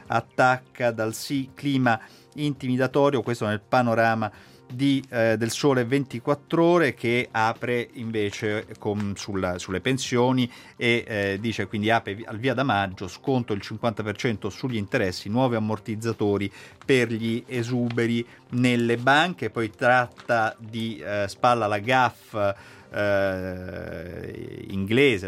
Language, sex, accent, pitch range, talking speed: Italian, male, native, 105-130 Hz, 115 wpm